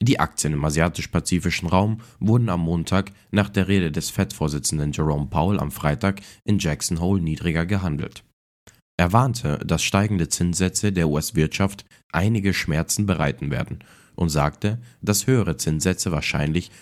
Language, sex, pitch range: German, male, 80-100 Hz